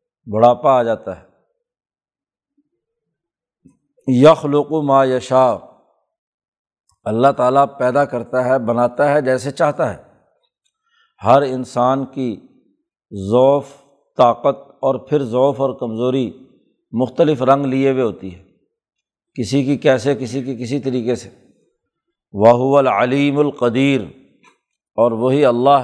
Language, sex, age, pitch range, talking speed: Urdu, male, 60-79, 125-150 Hz, 110 wpm